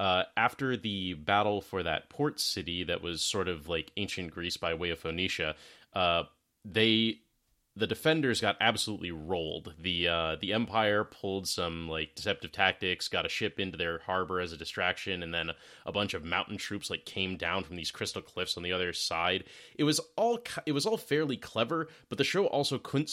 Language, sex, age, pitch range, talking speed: English, male, 30-49, 90-120 Hz, 195 wpm